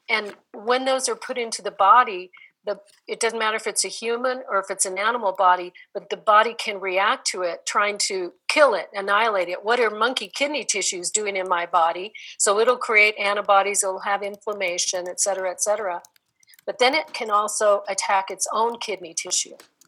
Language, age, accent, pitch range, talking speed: English, 50-69, American, 190-235 Hz, 195 wpm